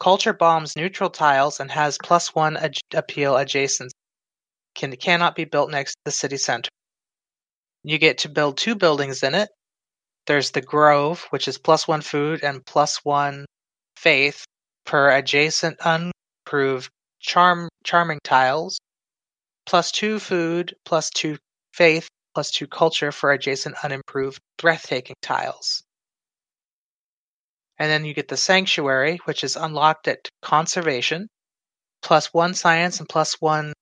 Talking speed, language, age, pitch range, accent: 125 wpm, English, 30-49, 140-165 Hz, American